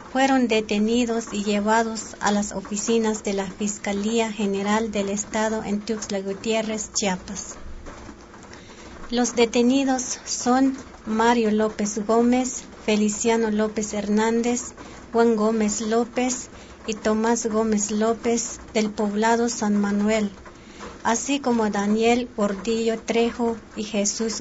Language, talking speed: Spanish, 110 wpm